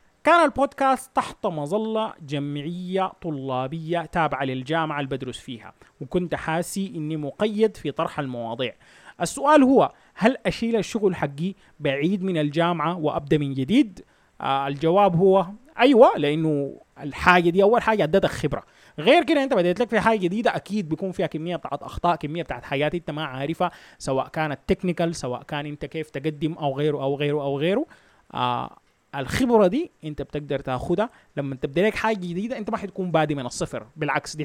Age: 30-49